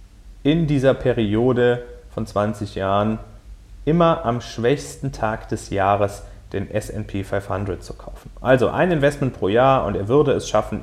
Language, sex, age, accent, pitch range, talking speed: German, male, 30-49, German, 100-130 Hz, 150 wpm